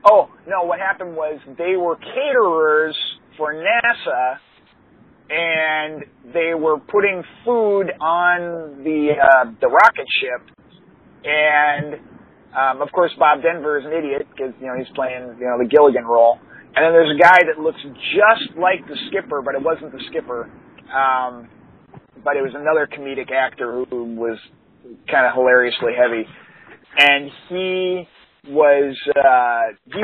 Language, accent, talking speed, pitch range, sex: English, American, 145 wpm, 135-175 Hz, male